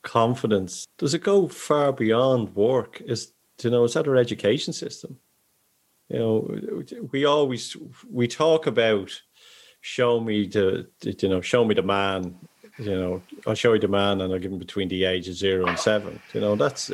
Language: English